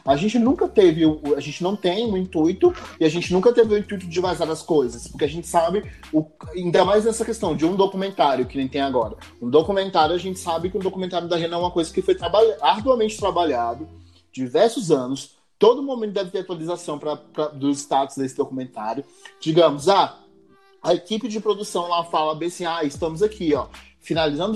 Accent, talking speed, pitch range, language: Brazilian, 205 wpm, 150-205 Hz, Portuguese